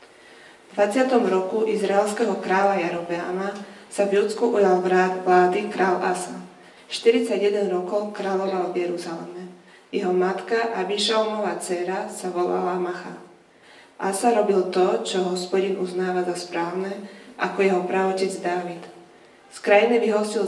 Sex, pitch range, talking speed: female, 180-205 Hz, 120 wpm